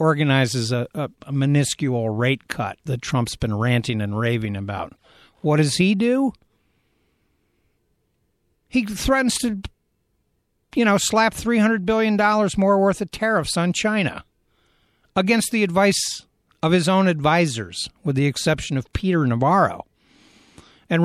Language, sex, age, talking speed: English, male, 60-79, 130 wpm